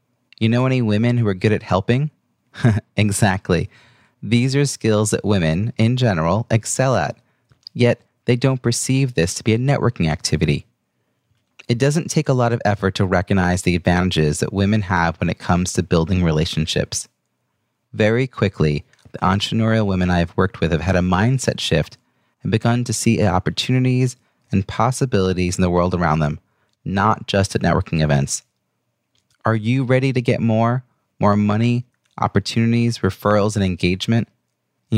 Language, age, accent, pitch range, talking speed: English, 30-49, American, 95-120 Hz, 160 wpm